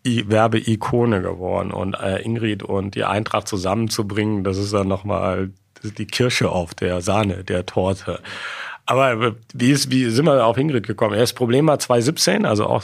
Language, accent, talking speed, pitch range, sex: German, German, 175 wpm, 110-140 Hz, male